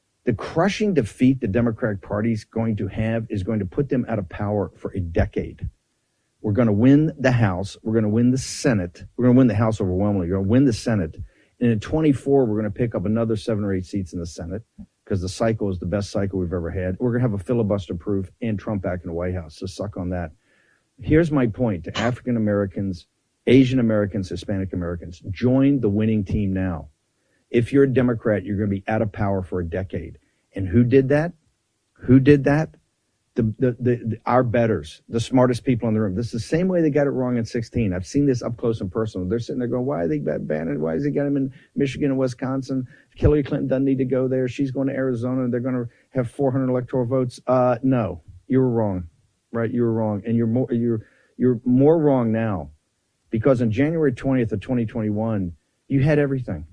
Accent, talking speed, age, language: American, 225 wpm, 50-69, English